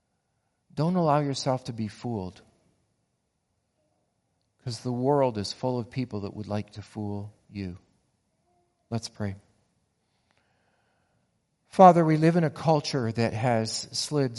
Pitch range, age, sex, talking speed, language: 105-125 Hz, 40-59, male, 125 wpm, English